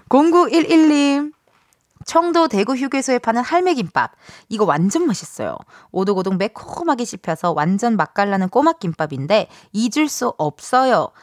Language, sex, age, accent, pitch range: Korean, female, 20-39, native, 195-310 Hz